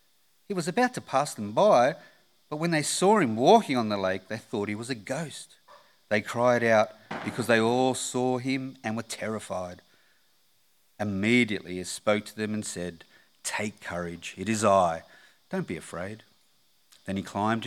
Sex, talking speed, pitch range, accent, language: male, 175 wpm, 100-130 Hz, Australian, English